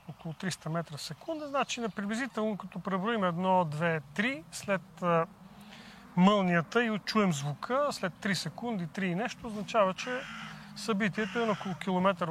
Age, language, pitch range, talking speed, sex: 40-59, Bulgarian, 165-205 Hz, 140 wpm, male